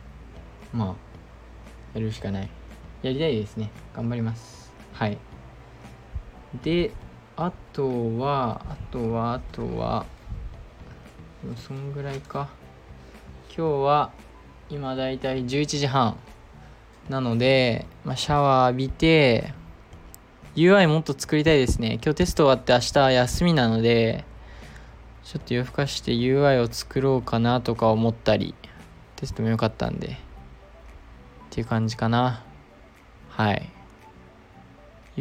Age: 20-39